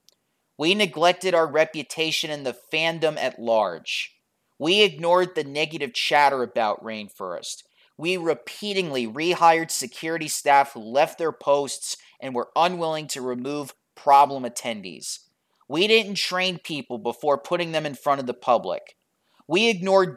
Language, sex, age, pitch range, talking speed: English, male, 30-49, 140-180 Hz, 135 wpm